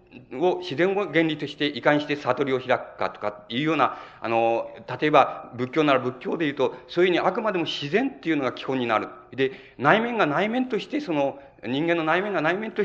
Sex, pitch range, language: male, 125-165 Hz, Japanese